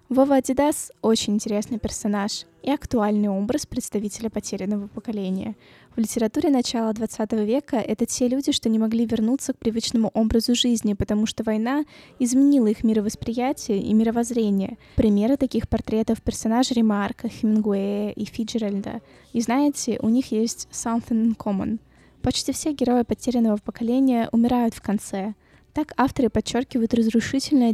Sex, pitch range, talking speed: female, 210-245 Hz, 145 wpm